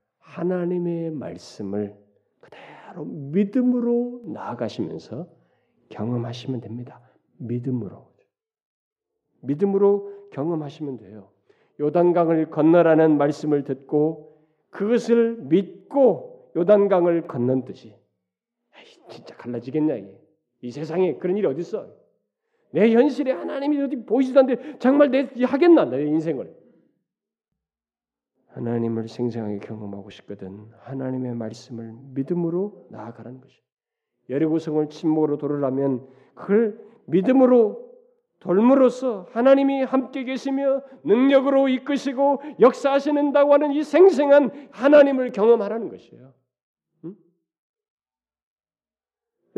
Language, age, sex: Korean, 40-59, male